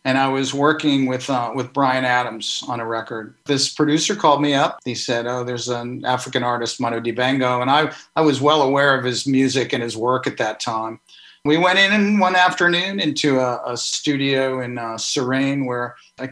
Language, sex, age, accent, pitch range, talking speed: English, male, 50-69, American, 130-155 Hz, 200 wpm